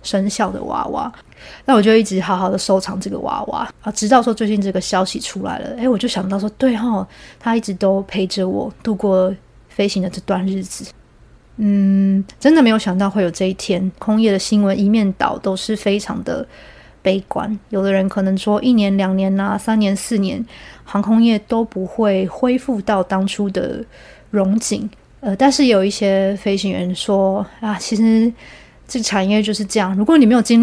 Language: Chinese